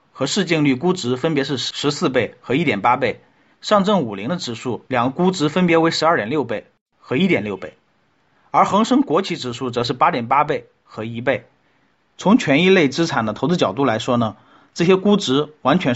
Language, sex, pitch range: Chinese, male, 125-180 Hz